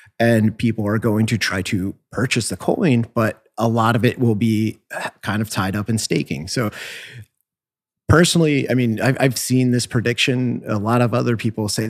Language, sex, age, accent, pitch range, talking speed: English, male, 30-49, American, 110-125 Hz, 185 wpm